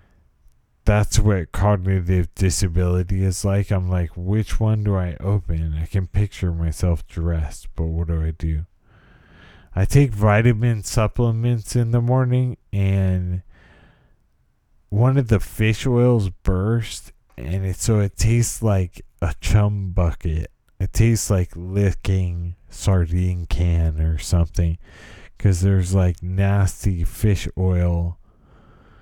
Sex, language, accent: male, English, American